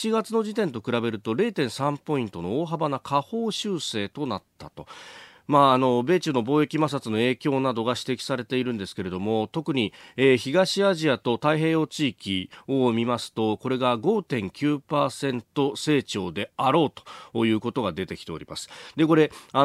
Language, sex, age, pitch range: Japanese, male, 40-59, 110-155 Hz